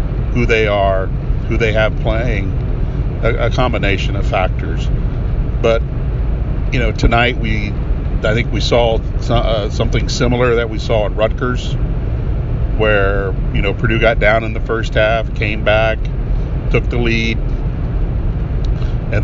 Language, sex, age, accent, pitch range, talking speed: English, male, 50-69, American, 105-125 Hz, 145 wpm